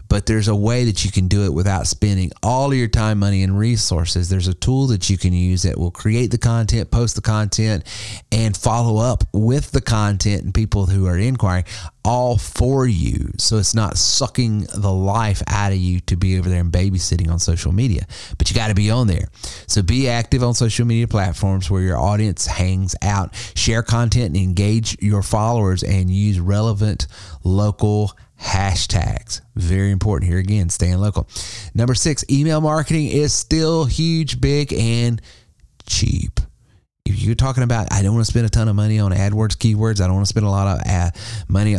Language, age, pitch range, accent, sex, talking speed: English, 30-49, 95-115 Hz, American, male, 190 wpm